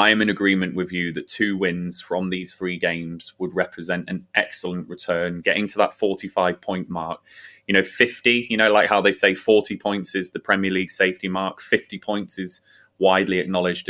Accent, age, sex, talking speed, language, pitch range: British, 20-39, male, 195 wpm, English, 90-105 Hz